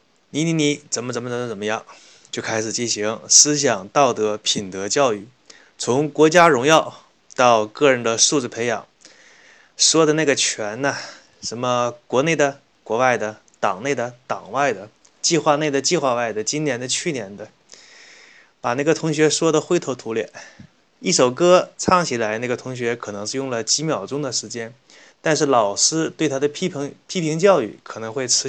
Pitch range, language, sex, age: 120-150 Hz, Chinese, male, 20-39